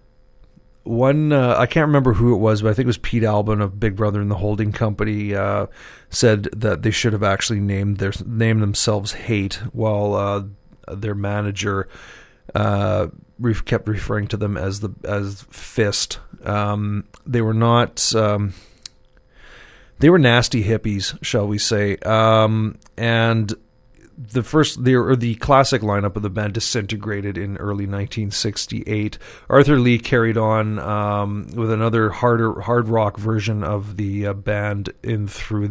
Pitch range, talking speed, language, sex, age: 100-115 Hz, 155 wpm, English, male, 30-49